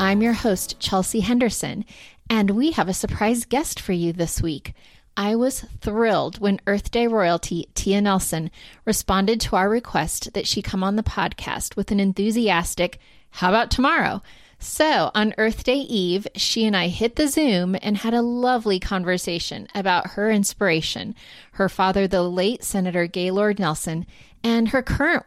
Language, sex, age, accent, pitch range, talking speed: English, female, 30-49, American, 180-225 Hz, 165 wpm